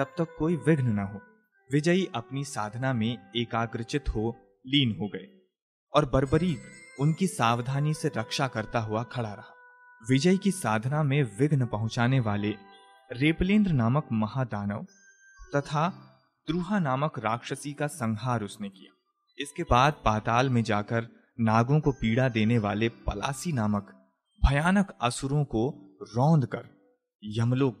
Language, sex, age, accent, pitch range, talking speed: Hindi, male, 30-49, native, 115-155 Hz, 125 wpm